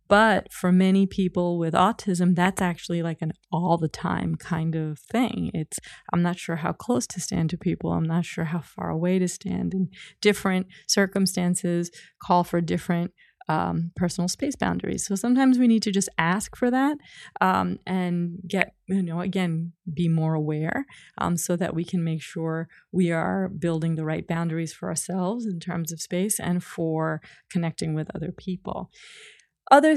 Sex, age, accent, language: female, 30-49, American, English